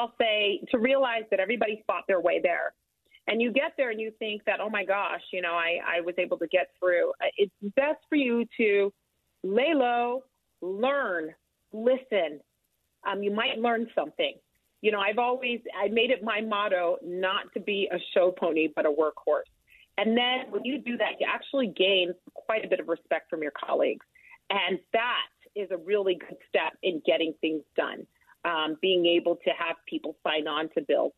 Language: English